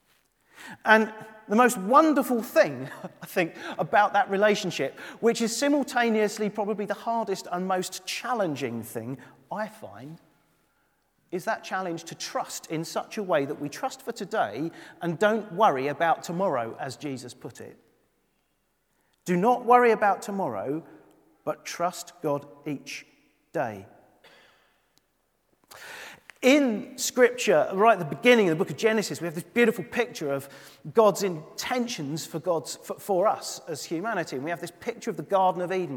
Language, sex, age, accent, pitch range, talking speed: English, male, 40-59, British, 170-220 Hz, 150 wpm